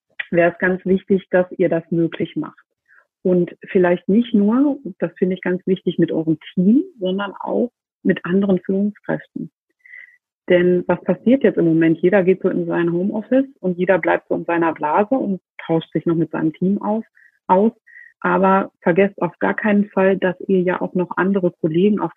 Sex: female